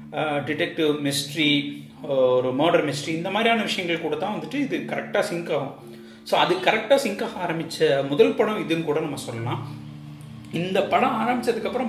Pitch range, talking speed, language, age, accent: 135-210 Hz, 145 wpm, Tamil, 30-49, native